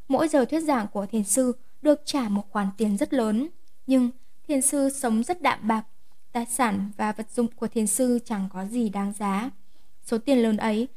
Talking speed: 210 wpm